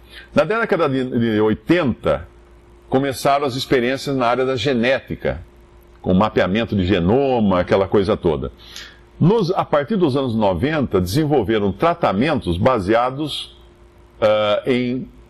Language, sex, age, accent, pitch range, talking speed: English, male, 50-69, Brazilian, 90-145 Hz, 105 wpm